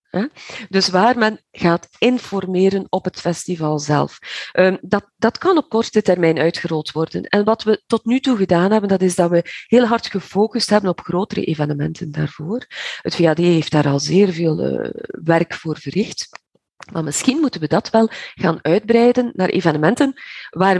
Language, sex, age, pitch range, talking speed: Dutch, female, 40-59, 160-215 Hz, 165 wpm